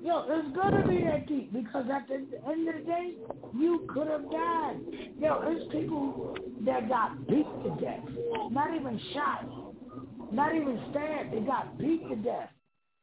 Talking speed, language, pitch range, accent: 165 wpm, English, 200-300 Hz, American